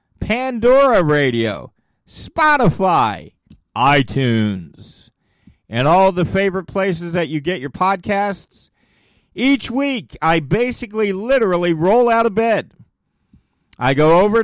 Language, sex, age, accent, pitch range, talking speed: English, male, 50-69, American, 150-215 Hz, 110 wpm